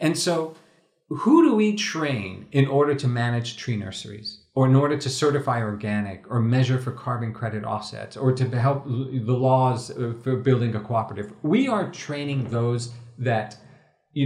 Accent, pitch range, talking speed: American, 125-160 Hz, 165 wpm